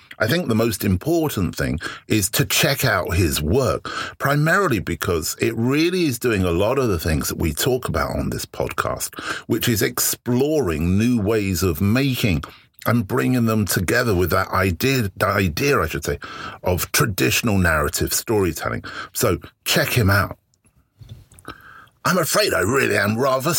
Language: English